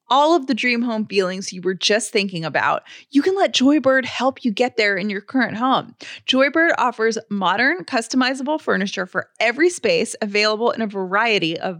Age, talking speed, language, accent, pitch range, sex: 30-49, 185 wpm, English, American, 205-275 Hz, female